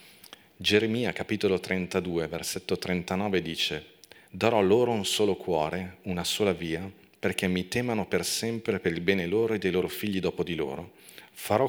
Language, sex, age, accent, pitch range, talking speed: Italian, male, 40-59, native, 90-110 Hz, 160 wpm